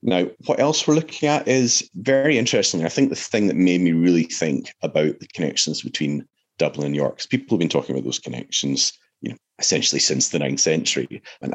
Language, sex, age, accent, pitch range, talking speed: English, male, 30-49, British, 75-115 Hz, 210 wpm